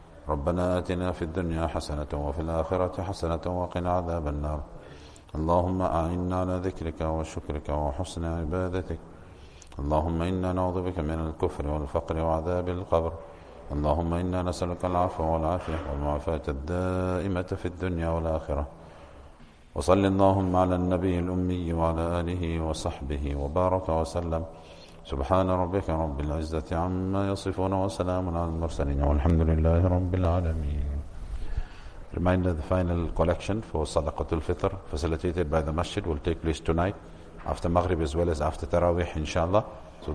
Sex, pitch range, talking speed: male, 80-90 Hz, 125 wpm